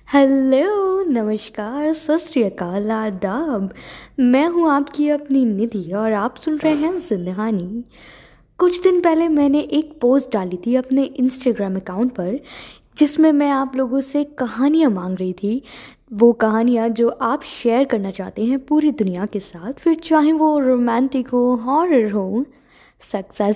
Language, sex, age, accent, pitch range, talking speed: Hindi, female, 20-39, native, 220-290 Hz, 140 wpm